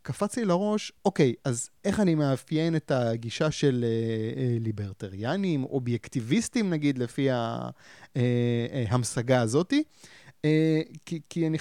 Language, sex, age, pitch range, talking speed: Hebrew, male, 30-49, 120-160 Hz, 125 wpm